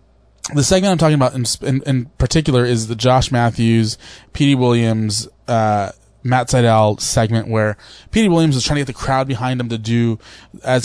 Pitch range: 110-130 Hz